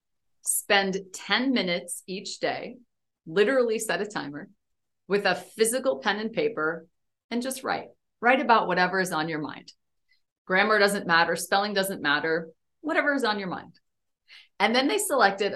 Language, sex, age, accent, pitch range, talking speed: English, female, 40-59, American, 160-210 Hz, 155 wpm